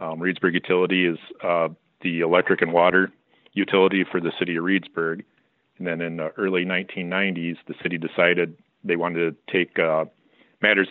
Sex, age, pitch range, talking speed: male, 40-59, 80-90 Hz, 165 wpm